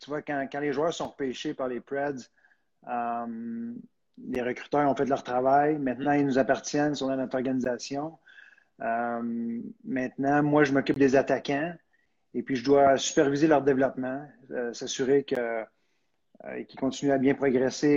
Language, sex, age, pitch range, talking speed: French, male, 30-49, 125-145 Hz, 165 wpm